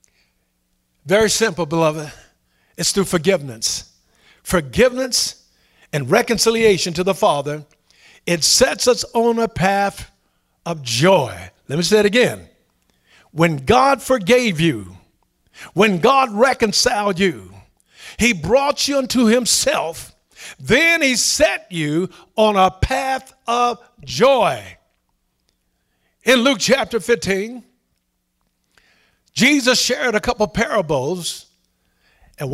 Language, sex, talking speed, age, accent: English, male, 105 wpm, 50-69, American